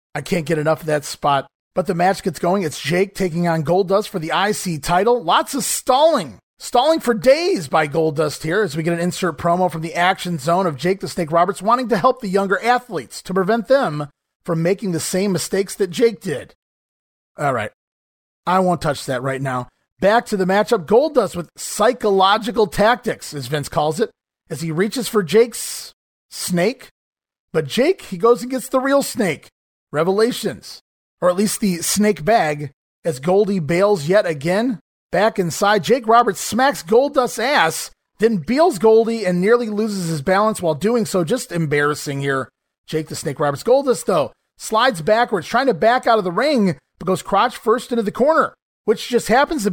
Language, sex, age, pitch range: English, male, 30-49, 165-230 Hz